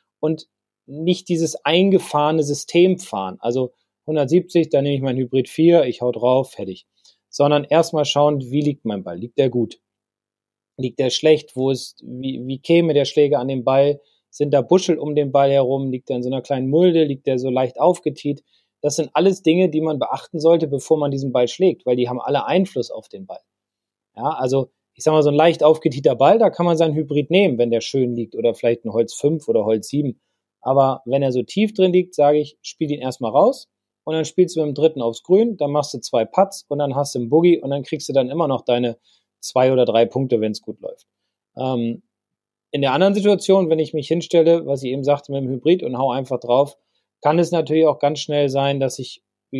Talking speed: 225 wpm